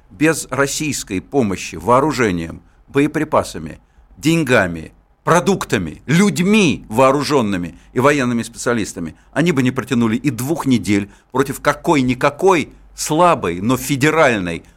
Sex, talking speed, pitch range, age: male, 100 wpm, 120-170 Hz, 60-79